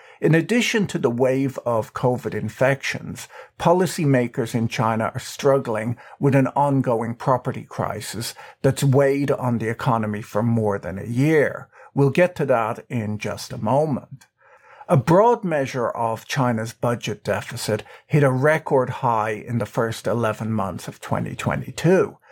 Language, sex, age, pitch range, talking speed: English, male, 50-69, 115-140 Hz, 145 wpm